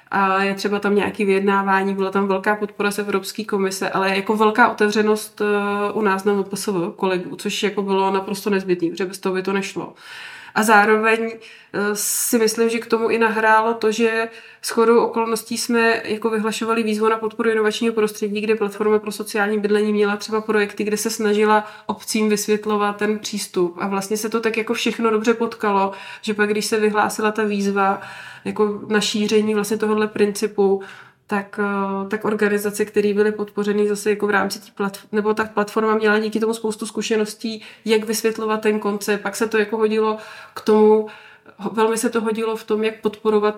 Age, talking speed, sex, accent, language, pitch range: 20-39, 175 wpm, female, native, Czech, 205-225 Hz